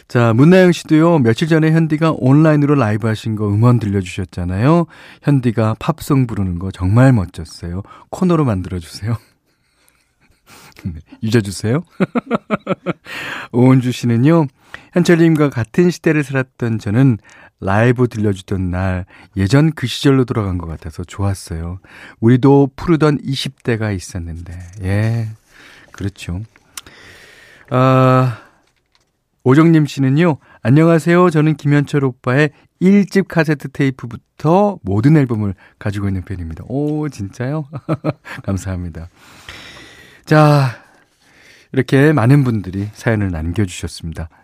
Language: Korean